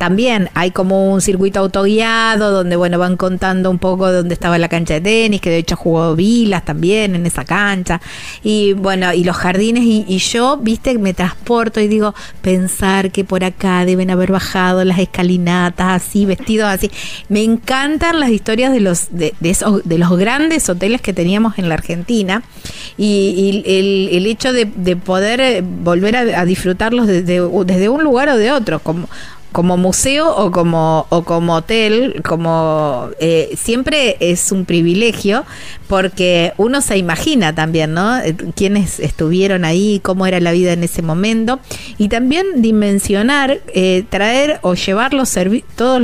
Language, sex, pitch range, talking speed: Spanish, female, 175-220 Hz, 170 wpm